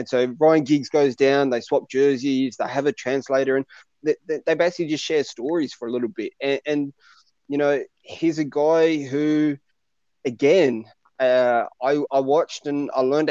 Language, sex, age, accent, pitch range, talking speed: English, male, 20-39, Australian, 125-145 Hz, 180 wpm